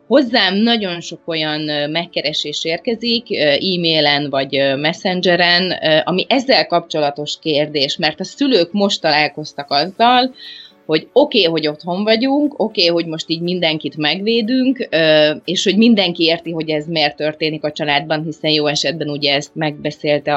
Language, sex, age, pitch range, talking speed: Hungarian, female, 30-49, 150-185 Hz, 135 wpm